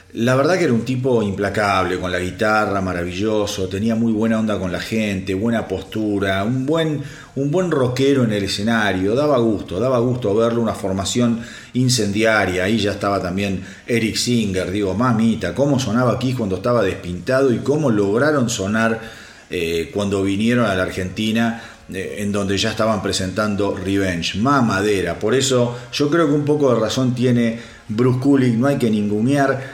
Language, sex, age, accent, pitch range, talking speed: Spanish, male, 40-59, Argentinian, 100-135 Hz, 170 wpm